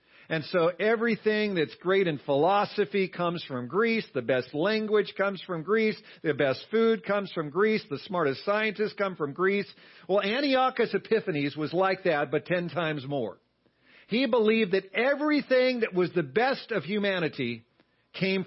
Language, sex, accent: English, male, American